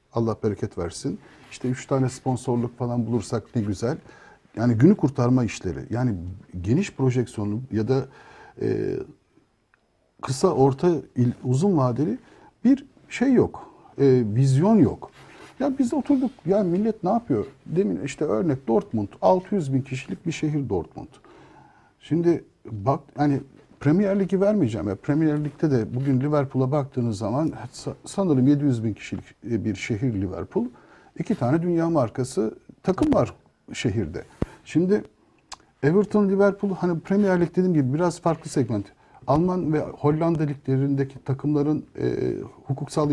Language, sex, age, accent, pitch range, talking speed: Turkish, male, 50-69, native, 120-170 Hz, 130 wpm